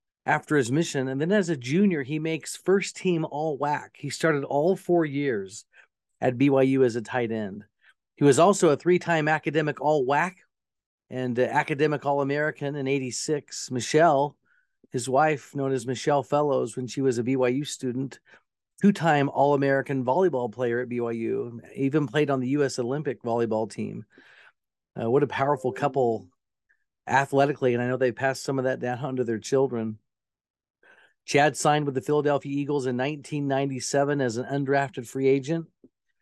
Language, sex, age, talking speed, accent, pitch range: English, male, 40-59, 155 wpm, American, 125-150 Hz